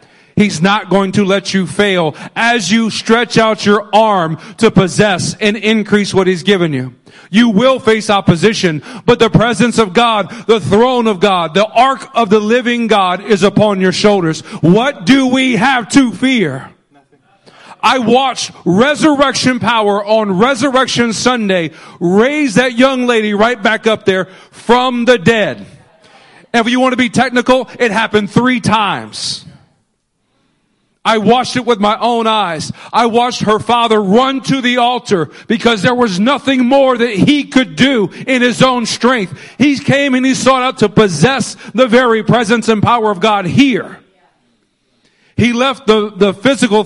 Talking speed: 165 wpm